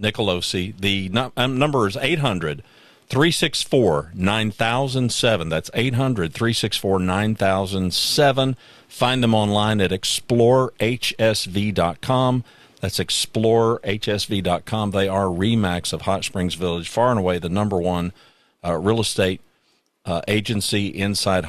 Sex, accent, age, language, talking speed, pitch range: male, American, 50-69, English, 105 wpm, 90-115 Hz